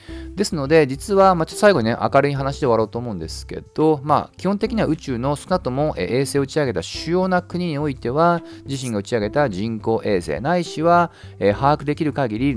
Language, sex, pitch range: Japanese, male, 110-170 Hz